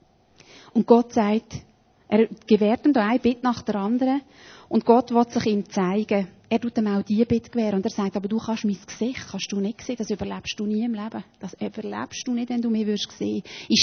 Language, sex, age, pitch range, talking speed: German, female, 30-49, 215-280 Hz, 230 wpm